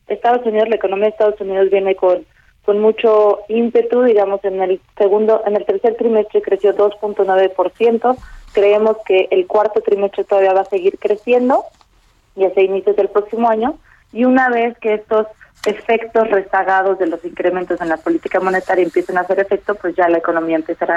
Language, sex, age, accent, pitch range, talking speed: Spanish, female, 30-49, Mexican, 180-215 Hz, 175 wpm